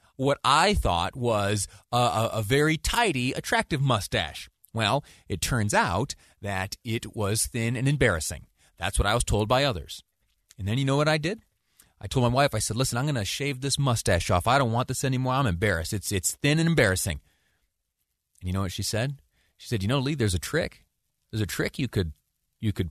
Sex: male